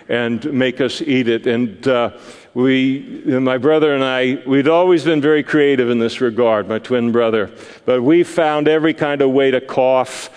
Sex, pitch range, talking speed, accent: male, 125-155 Hz, 185 wpm, American